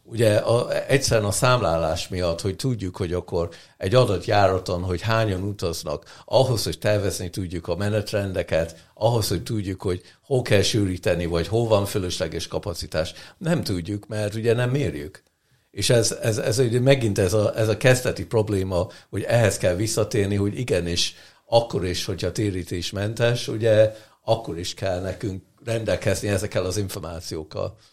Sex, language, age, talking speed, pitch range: male, Hungarian, 60-79, 150 wpm, 90-115 Hz